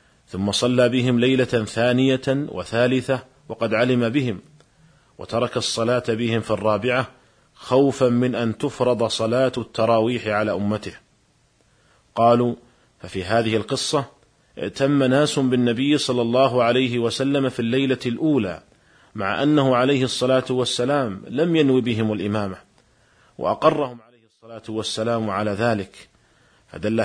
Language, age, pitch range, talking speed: Arabic, 40-59, 110-130 Hz, 115 wpm